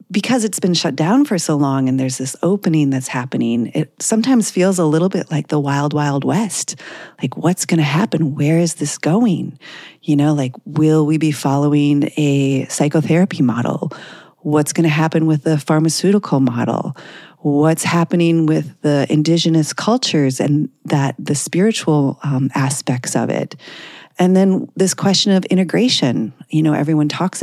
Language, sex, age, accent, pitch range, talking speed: English, female, 40-59, American, 140-170 Hz, 165 wpm